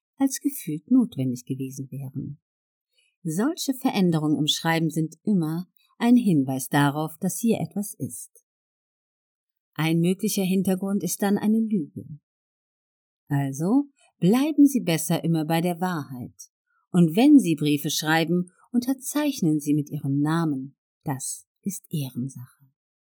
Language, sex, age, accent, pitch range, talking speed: German, female, 50-69, German, 145-205 Hz, 120 wpm